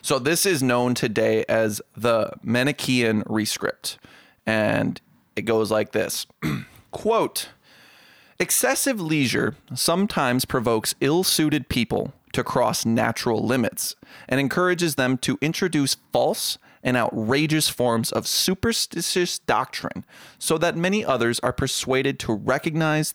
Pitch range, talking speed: 120-180 Hz, 115 wpm